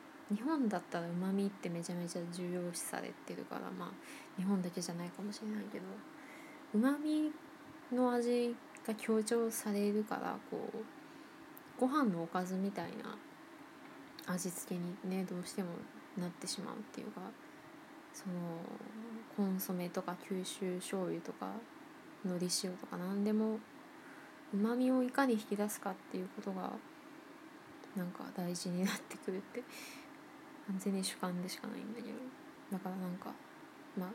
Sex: female